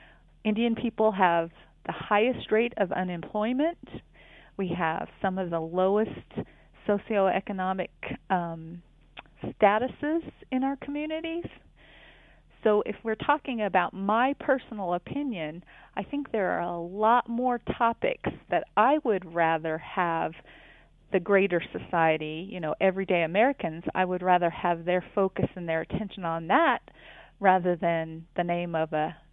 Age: 40-59